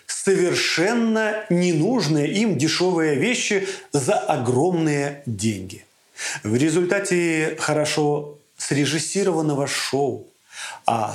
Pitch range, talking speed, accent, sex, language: 135-180 Hz, 75 wpm, native, male, Russian